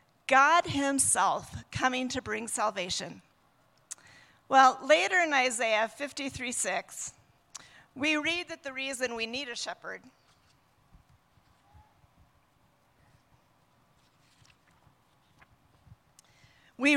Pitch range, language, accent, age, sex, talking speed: 215-275 Hz, English, American, 40-59, female, 75 wpm